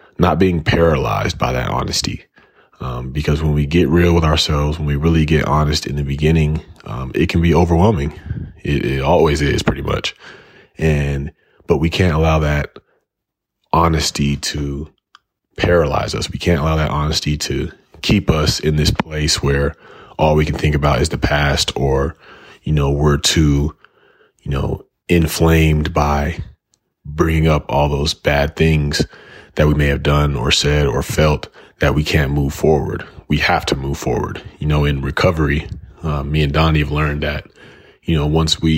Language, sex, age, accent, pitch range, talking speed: English, male, 30-49, American, 75-85 Hz, 175 wpm